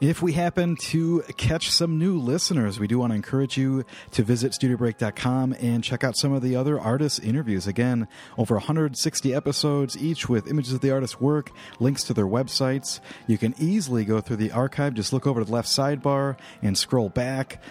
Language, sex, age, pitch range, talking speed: English, male, 40-59, 115-145 Hz, 195 wpm